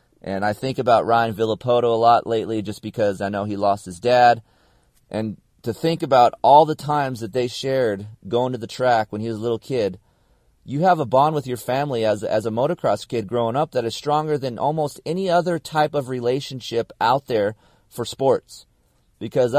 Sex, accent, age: male, American, 40-59